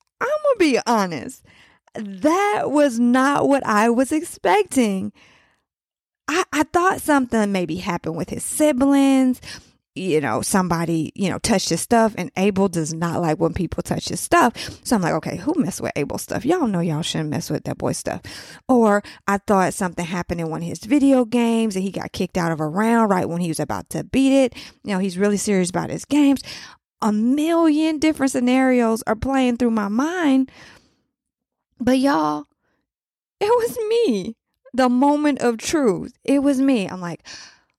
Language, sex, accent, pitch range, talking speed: English, female, American, 190-290 Hz, 185 wpm